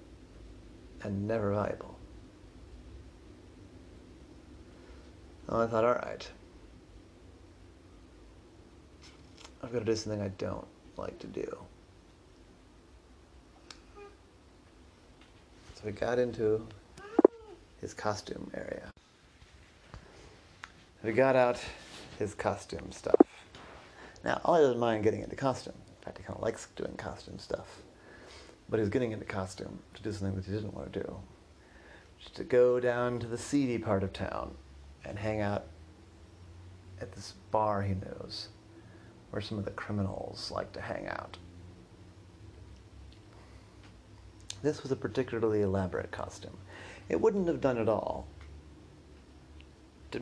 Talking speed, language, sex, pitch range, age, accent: 125 wpm, English, male, 85-110 Hz, 30-49, American